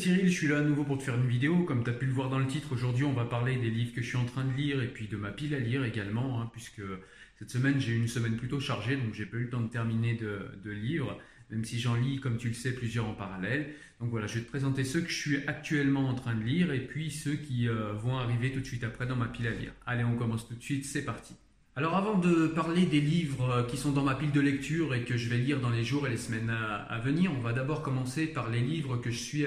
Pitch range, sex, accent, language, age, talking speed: 120-145 Hz, male, French, French, 30-49, 300 wpm